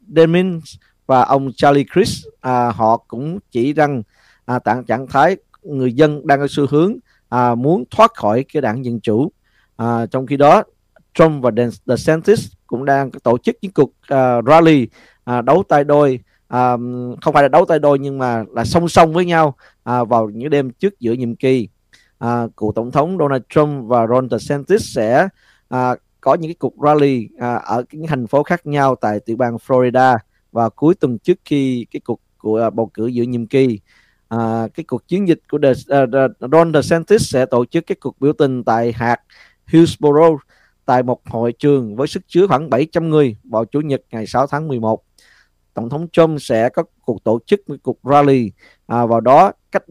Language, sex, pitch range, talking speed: Vietnamese, male, 115-150 Hz, 190 wpm